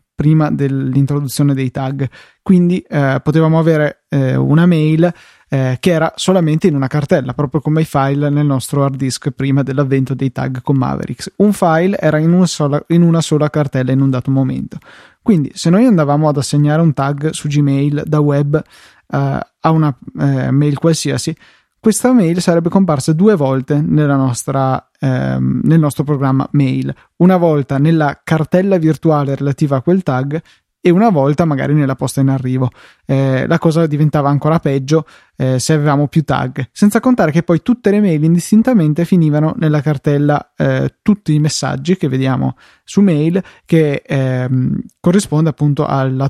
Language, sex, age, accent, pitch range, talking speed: Italian, male, 20-39, native, 135-165 Hz, 160 wpm